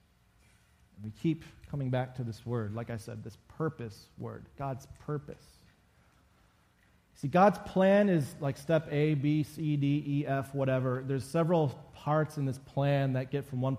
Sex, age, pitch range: male, 30-49, 130-170 Hz